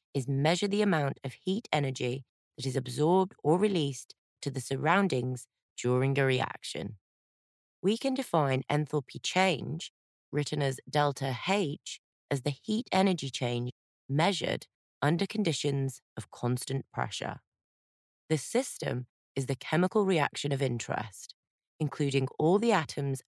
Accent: British